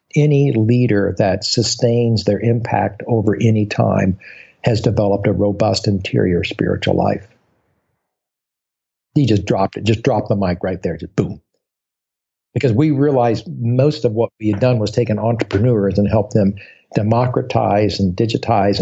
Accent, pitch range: American, 105-125 Hz